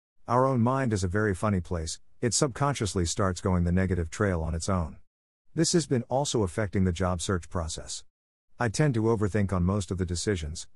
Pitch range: 90-115 Hz